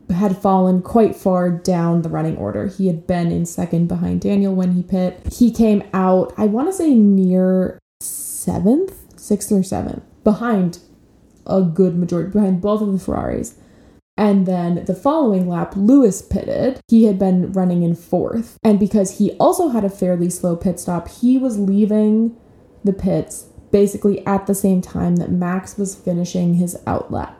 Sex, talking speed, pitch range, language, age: female, 170 wpm, 180-210 Hz, English, 20-39